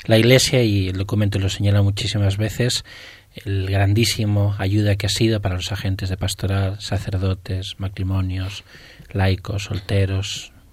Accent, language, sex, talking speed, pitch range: Spanish, Spanish, male, 135 wpm, 100-110 Hz